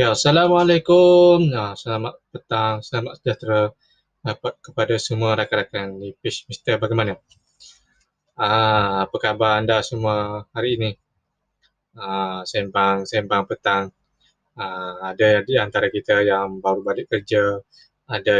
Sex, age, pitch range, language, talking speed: male, 20-39, 100-125 Hz, Malay, 115 wpm